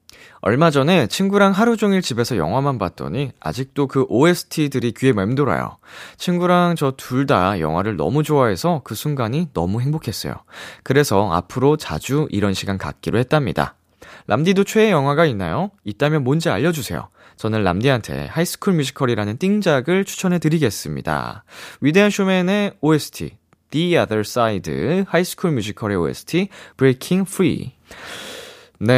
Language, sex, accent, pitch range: Korean, male, native, 95-165 Hz